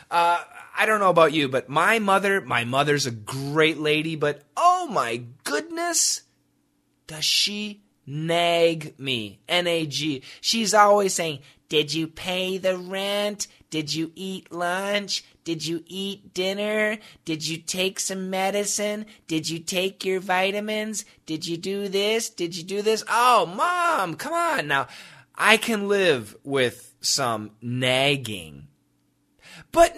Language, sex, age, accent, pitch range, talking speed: English, male, 20-39, American, 135-200 Hz, 140 wpm